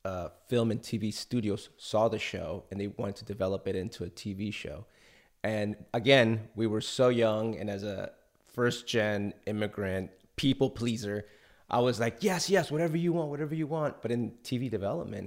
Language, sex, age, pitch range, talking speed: English, male, 30-49, 105-125 Hz, 185 wpm